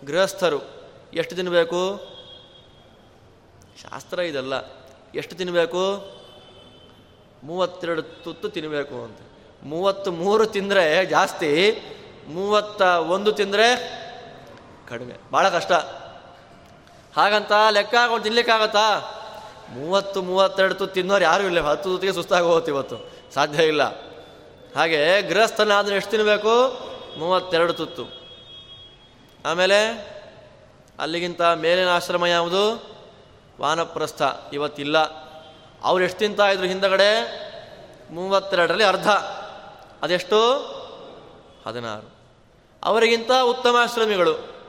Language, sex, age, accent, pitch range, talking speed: Kannada, male, 20-39, native, 180-225 Hz, 85 wpm